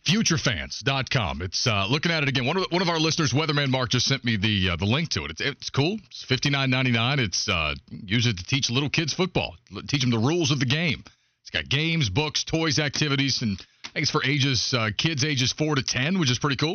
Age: 40-59